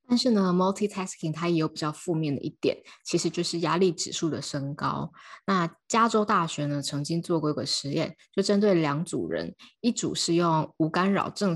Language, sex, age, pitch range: Chinese, female, 20-39, 150-190 Hz